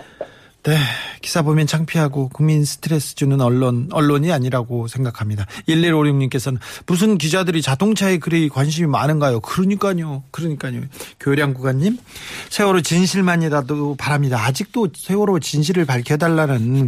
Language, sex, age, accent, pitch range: Korean, male, 40-59, native, 135-185 Hz